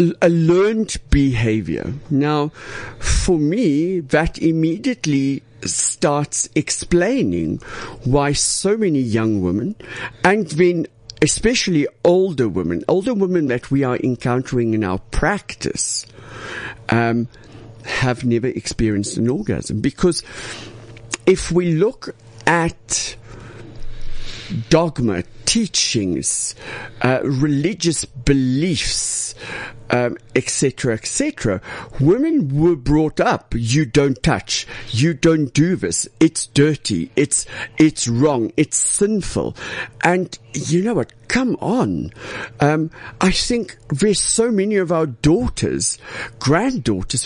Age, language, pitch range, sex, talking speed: 60-79, English, 115-170 Hz, male, 105 wpm